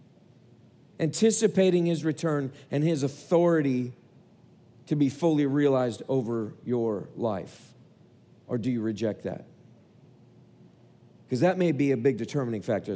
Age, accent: 40-59, American